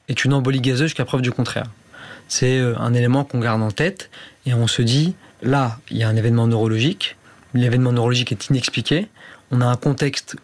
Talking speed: 195 wpm